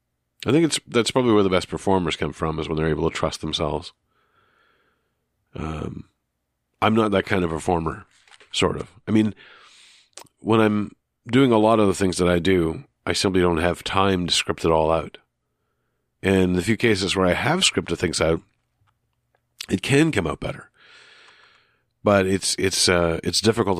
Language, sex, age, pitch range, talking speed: English, male, 40-59, 80-105 Hz, 180 wpm